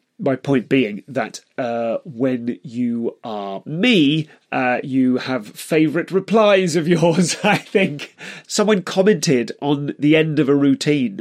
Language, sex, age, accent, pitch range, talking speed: English, male, 30-49, British, 135-185 Hz, 140 wpm